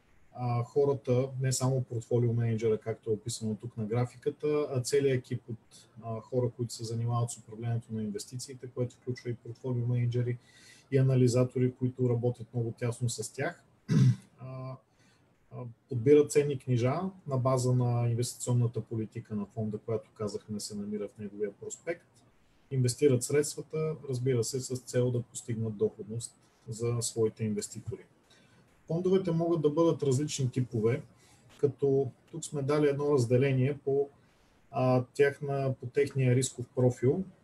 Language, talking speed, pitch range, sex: Bulgarian, 135 wpm, 120-140 Hz, male